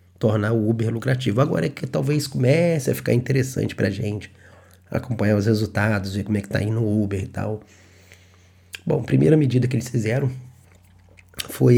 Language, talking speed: English, 175 wpm